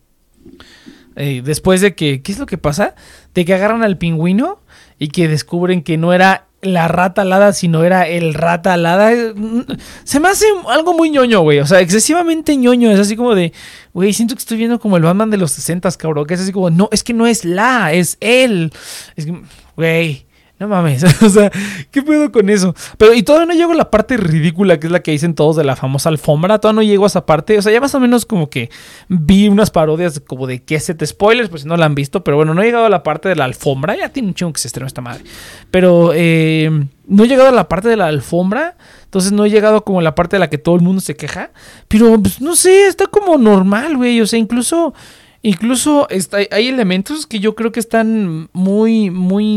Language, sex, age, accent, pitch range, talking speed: Spanish, male, 20-39, Mexican, 160-225 Hz, 235 wpm